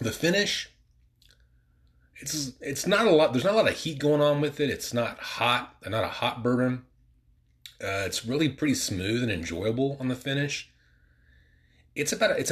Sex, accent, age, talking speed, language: male, American, 30-49, 175 wpm, English